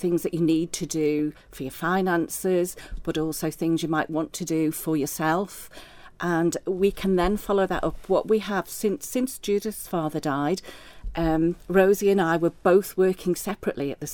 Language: English